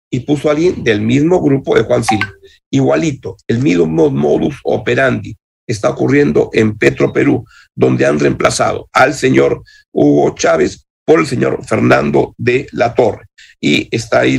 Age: 50-69